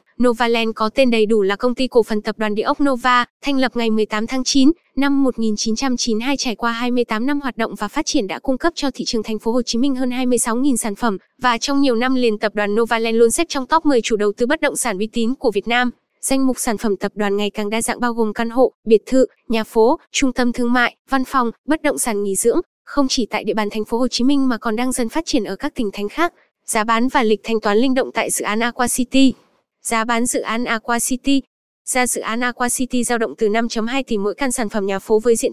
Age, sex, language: 10-29, female, Vietnamese